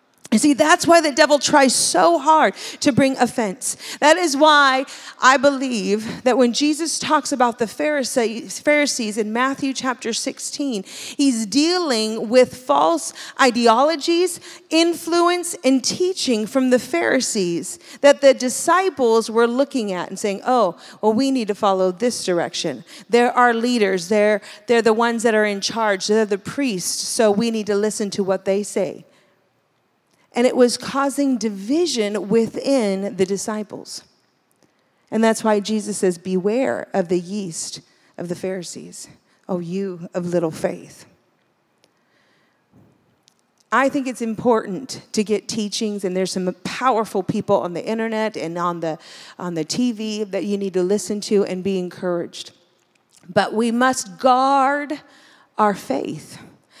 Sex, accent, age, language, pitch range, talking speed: female, American, 40-59, English, 200-270 Hz, 150 wpm